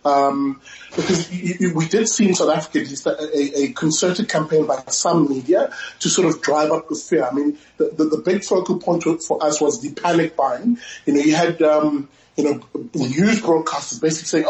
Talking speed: 195 wpm